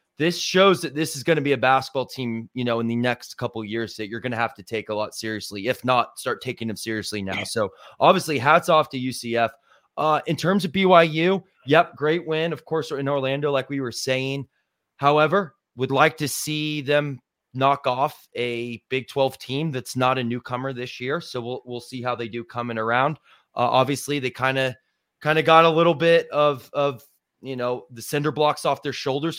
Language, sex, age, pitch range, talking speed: English, male, 20-39, 115-140 Hz, 215 wpm